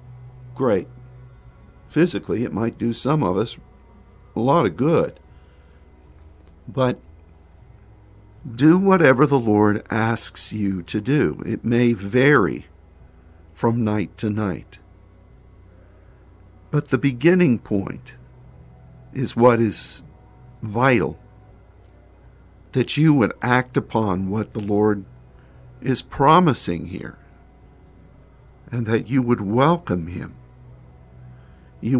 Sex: male